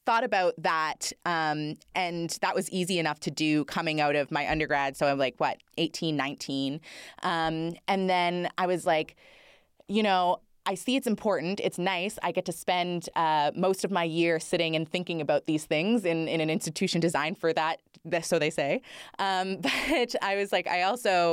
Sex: female